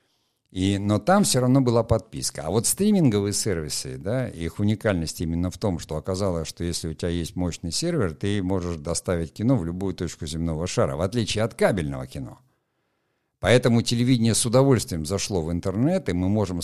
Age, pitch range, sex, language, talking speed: 60-79, 85-115 Hz, male, Russian, 175 wpm